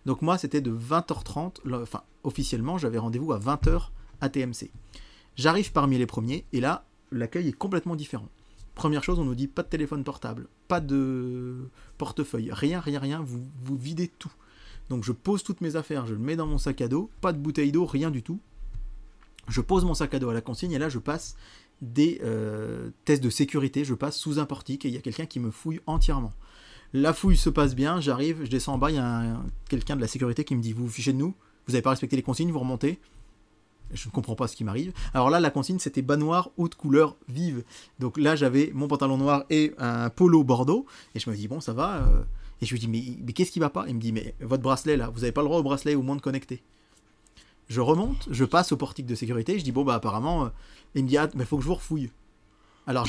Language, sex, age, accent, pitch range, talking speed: French, male, 30-49, French, 115-150 Hz, 245 wpm